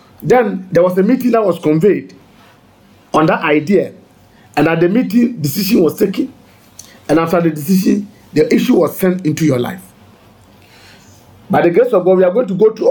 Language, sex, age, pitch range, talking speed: English, male, 50-69, 135-205 Hz, 185 wpm